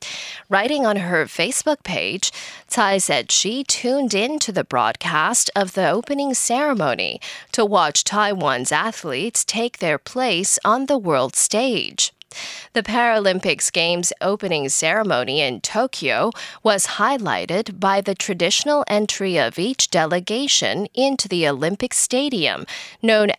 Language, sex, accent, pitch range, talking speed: English, female, American, 175-245 Hz, 125 wpm